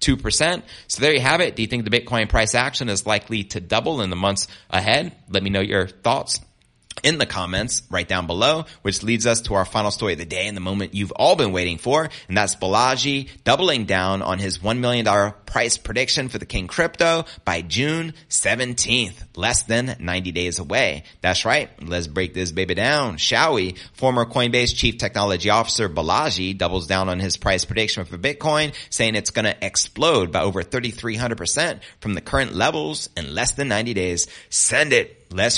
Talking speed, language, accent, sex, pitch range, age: 195 wpm, English, American, male, 90-120 Hz, 30-49